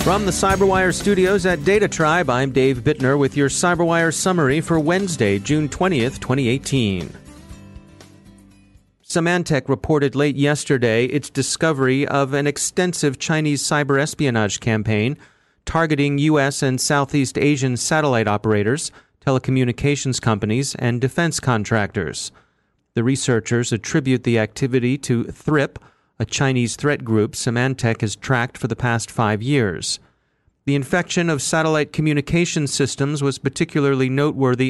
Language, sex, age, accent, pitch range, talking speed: English, male, 40-59, American, 115-150 Hz, 125 wpm